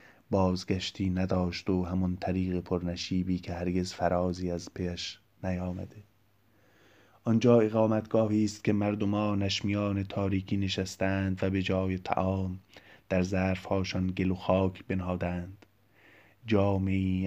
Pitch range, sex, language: 90-100 Hz, male, Persian